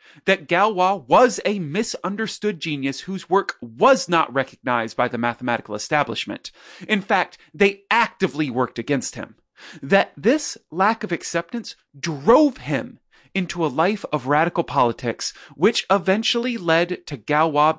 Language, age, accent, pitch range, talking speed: English, 30-49, American, 145-210 Hz, 135 wpm